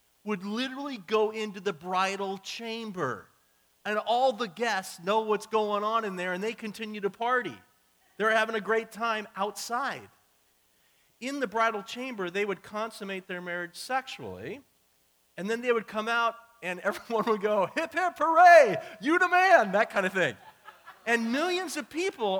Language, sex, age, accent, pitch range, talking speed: English, male, 40-59, American, 160-220 Hz, 165 wpm